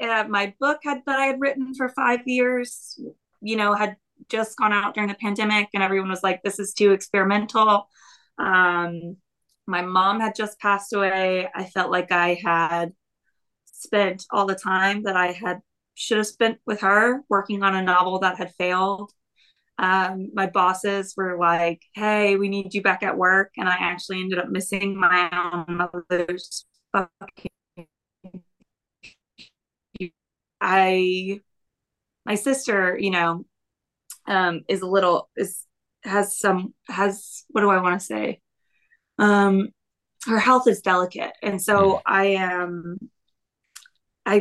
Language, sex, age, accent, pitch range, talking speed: English, female, 20-39, American, 185-210 Hz, 150 wpm